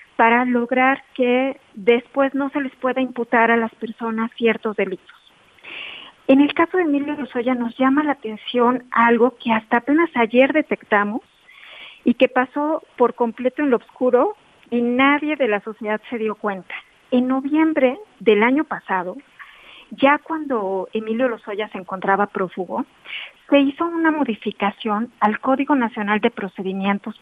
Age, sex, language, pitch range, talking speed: 40-59, female, Spanish, 215-275 Hz, 150 wpm